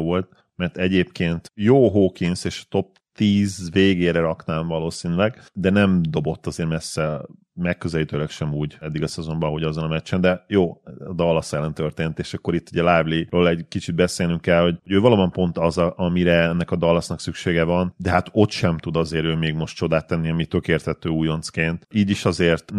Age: 30-49